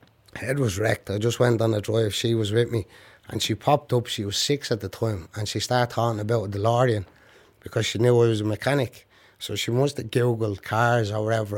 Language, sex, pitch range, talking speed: English, male, 105-125 Hz, 235 wpm